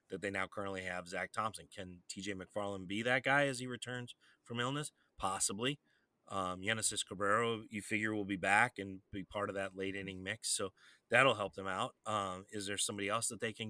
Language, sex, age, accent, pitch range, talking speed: English, male, 30-49, American, 100-120 Hz, 205 wpm